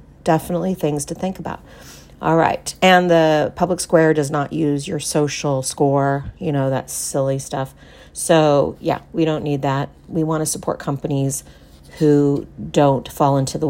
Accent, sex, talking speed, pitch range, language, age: American, female, 165 wpm, 140-165 Hz, English, 40-59